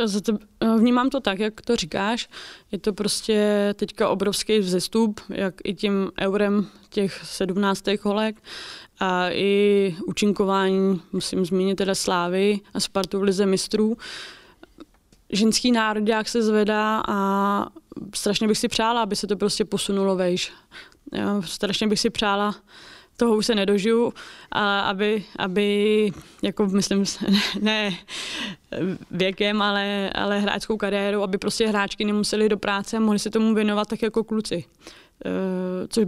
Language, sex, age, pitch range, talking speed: Czech, female, 20-39, 200-220 Hz, 140 wpm